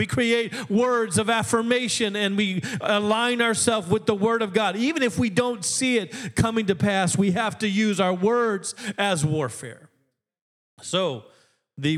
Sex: male